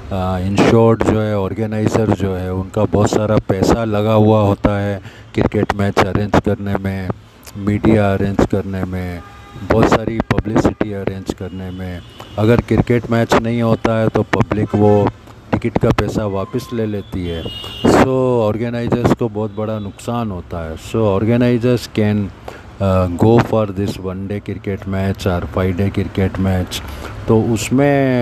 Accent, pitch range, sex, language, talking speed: native, 100-110 Hz, male, Hindi, 155 wpm